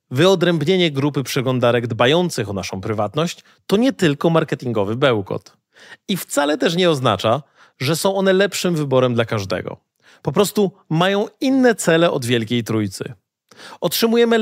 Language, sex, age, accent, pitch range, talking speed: Polish, male, 30-49, native, 125-190 Hz, 135 wpm